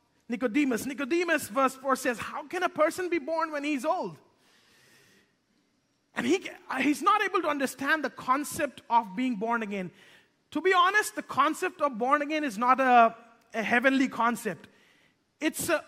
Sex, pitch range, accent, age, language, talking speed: male, 245-320 Hz, Indian, 30-49, English, 165 wpm